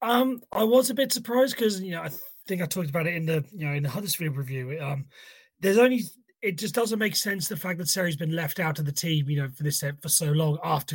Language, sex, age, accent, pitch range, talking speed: English, male, 30-49, British, 145-185 Hz, 275 wpm